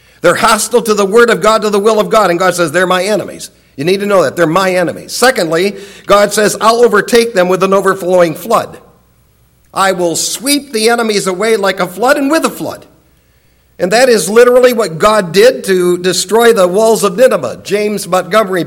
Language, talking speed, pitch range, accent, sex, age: English, 205 wpm, 185-230 Hz, American, male, 50-69